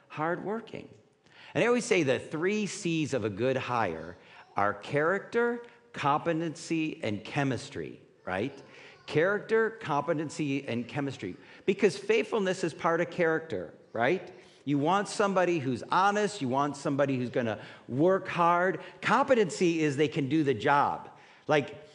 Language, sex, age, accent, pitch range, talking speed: English, male, 50-69, American, 135-190 Hz, 140 wpm